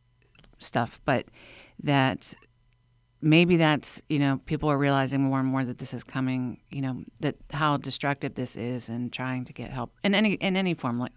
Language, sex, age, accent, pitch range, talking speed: English, female, 50-69, American, 130-155 Hz, 190 wpm